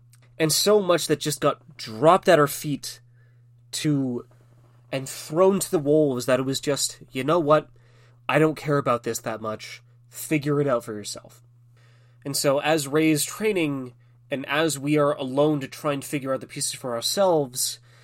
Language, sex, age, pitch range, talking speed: English, male, 20-39, 120-175 Hz, 180 wpm